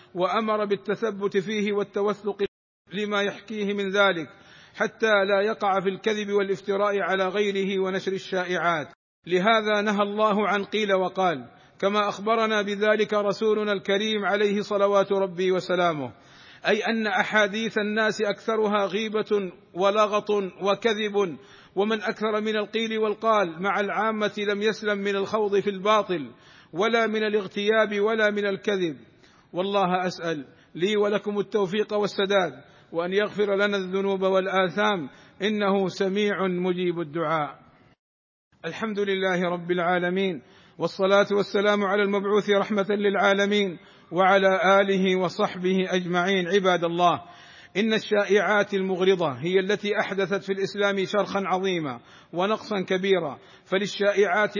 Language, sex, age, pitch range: Arabic, male, 50-69, 185-210 Hz